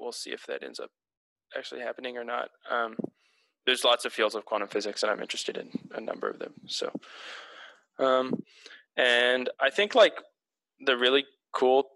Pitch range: 110-140 Hz